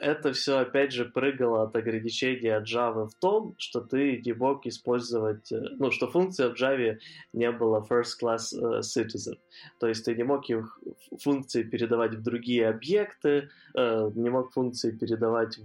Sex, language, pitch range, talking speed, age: male, Ukrainian, 110-130 Hz, 135 wpm, 20-39